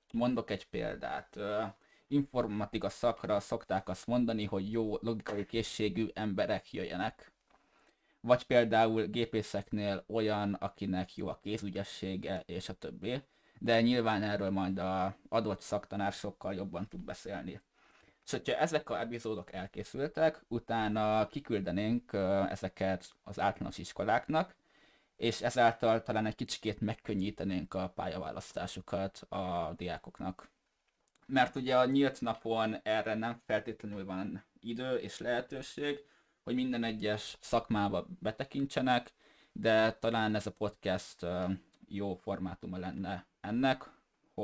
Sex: male